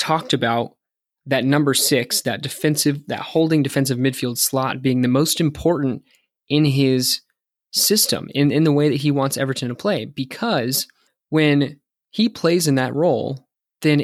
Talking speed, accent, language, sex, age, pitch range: 160 wpm, American, English, male, 20-39, 125-145 Hz